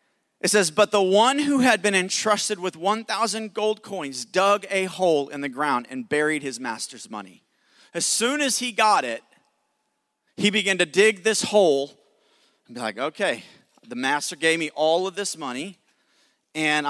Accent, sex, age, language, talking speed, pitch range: American, male, 40-59, English, 175 wpm, 160-220 Hz